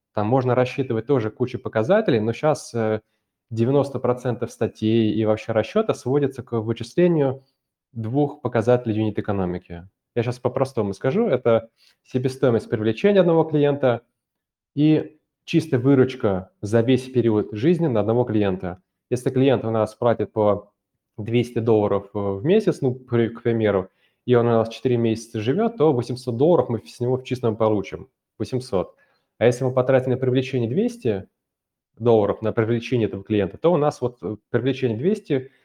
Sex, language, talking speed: male, Russian, 145 wpm